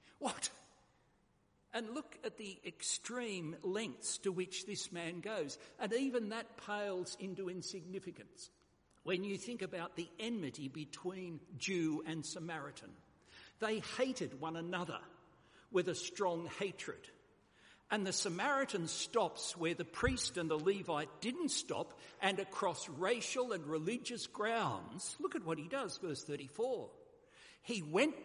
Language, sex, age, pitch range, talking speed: English, male, 60-79, 160-235 Hz, 135 wpm